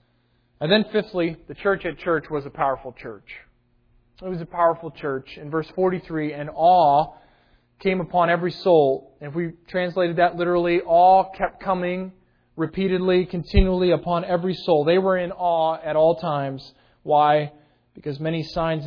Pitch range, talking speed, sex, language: 150-205 Hz, 160 wpm, male, English